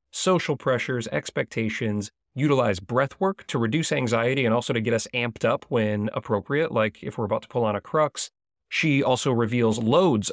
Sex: male